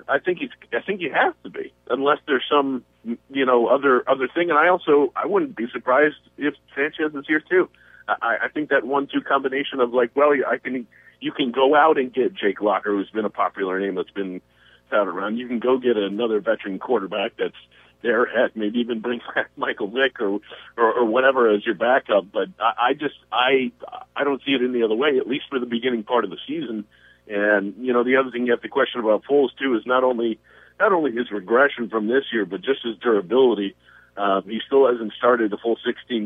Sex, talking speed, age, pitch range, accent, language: male, 225 wpm, 50-69, 110-140 Hz, American, English